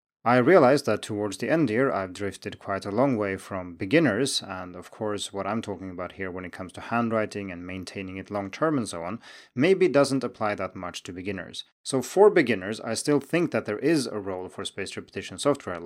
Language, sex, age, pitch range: Chinese, male, 30-49, 90-125 Hz